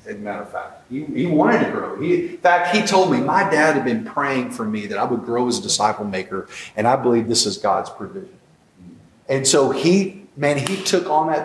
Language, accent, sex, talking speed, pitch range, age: English, American, male, 235 wpm, 120-165 Hz, 40-59